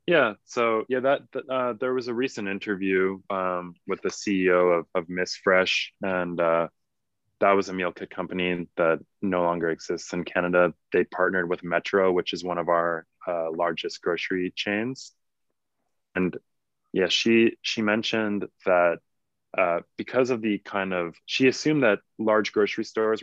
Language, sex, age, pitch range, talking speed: Danish, male, 20-39, 85-100 Hz, 165 wpm